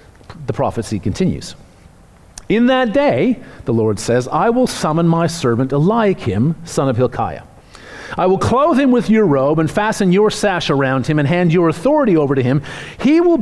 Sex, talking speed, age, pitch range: male, 180 wpm, 40-59, 145-200 Hz